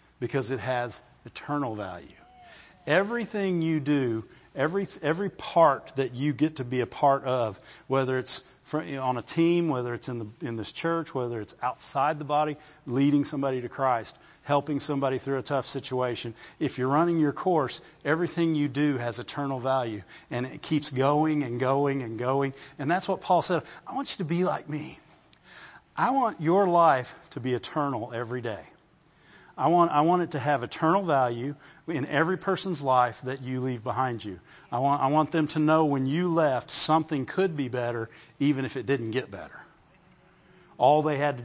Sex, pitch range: male, 130-165 Hz